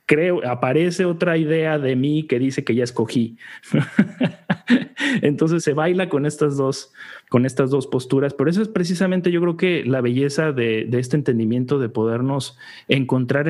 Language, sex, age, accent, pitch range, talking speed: Spanish, male, 40-59, Mexican, 120-155 Hz, 155 wpm